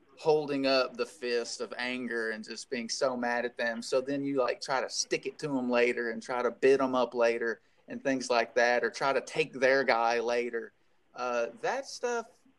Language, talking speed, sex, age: English, 215 wpm, male, 30-49